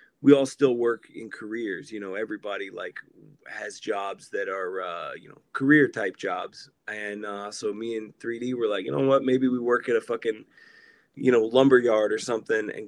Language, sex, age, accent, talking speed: English, male, 20-39, American, 205 wpm